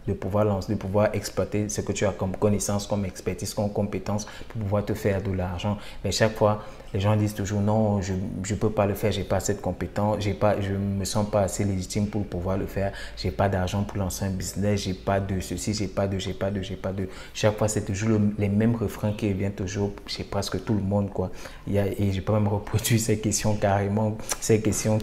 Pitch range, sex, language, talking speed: 95-105 Hz, male, French, 265 wpm